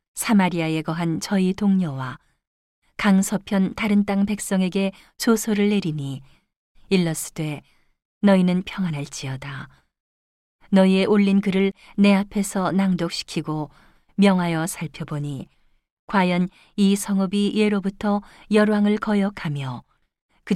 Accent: native